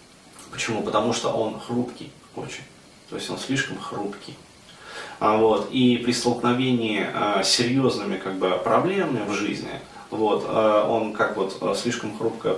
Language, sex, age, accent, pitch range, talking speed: Russian, male, 30-49, native, 105-125 Hz, 140 wpm